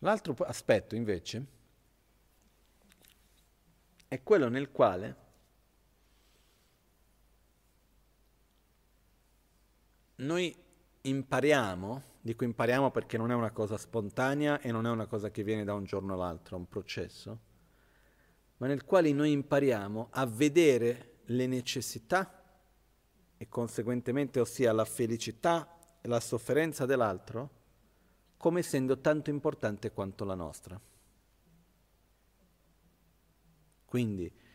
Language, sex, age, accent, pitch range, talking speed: Italian, male, 40-59, native, 105-140 Hz, 100 wpm